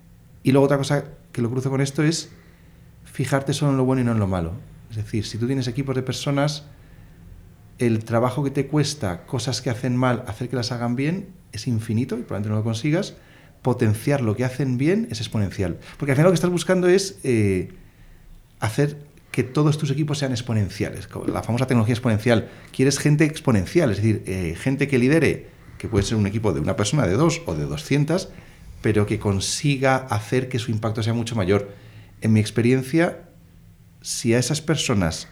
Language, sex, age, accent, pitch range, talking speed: Spanish, male, 40-59, Spanish, 110-140 Hz, 195 wpm